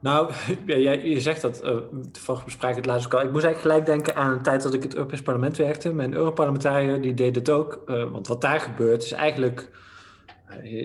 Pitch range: 115-135 Hz